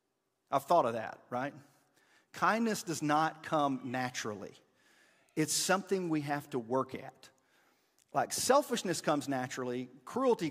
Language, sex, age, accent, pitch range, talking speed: English, male, 40-59, American, 145-195 Hz, 125 wpm